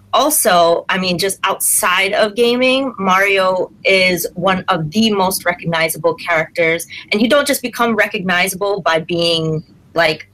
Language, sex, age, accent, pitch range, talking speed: English, female, 30-49, American, 175-225 Hz, 140 wpm